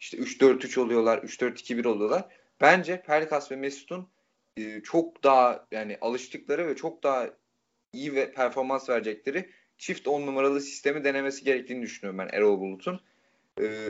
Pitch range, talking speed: 125-165 Hz, 160 wpm